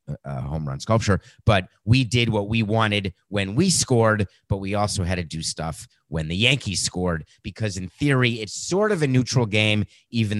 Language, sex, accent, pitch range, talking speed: English, male, American, 105-150 Hz, 195 wpm